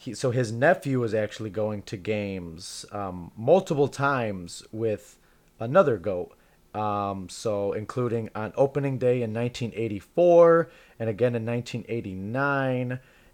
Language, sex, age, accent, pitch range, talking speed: English, male, 30-49, American, 105-125 Hz, 115 wpm